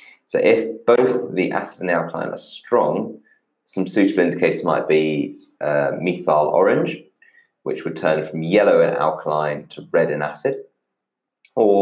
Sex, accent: male, British